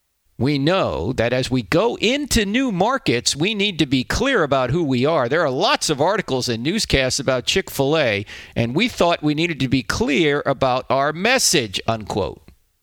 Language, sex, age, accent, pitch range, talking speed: English, male, 50-69, American, 115-170 Hz, 185 wpm